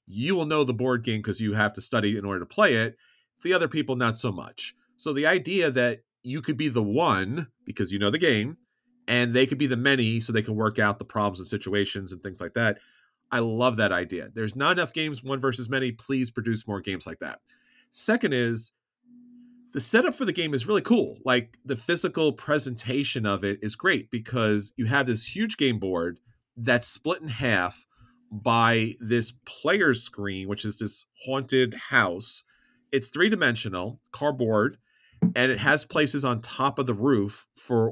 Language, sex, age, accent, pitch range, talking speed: English, male, 40-59, American, 105-135 Hz, 195 wpm